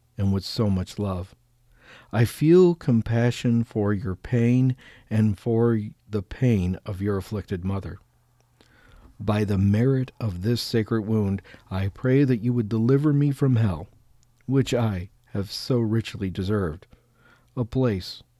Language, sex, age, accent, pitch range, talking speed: English, male, 50-69, American, 100-125 Hz, 140 wpm